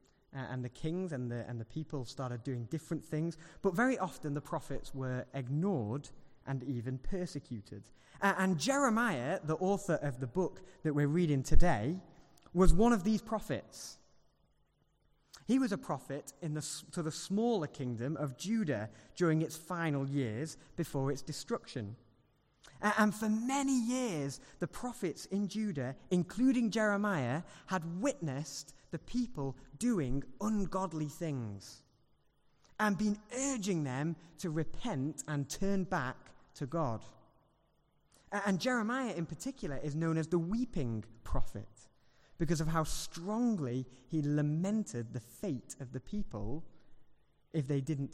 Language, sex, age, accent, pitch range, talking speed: English, male, 20-39, British, 135-195 Hz, 140 wpm